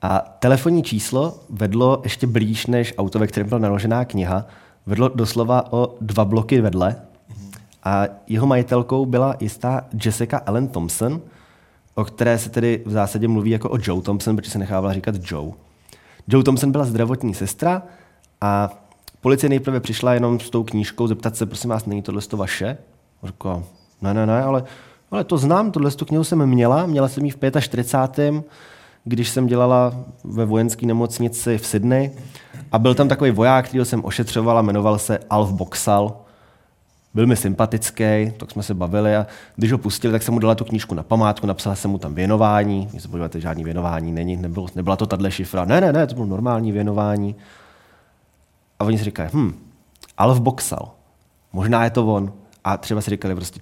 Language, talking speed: Czech, 180 wpm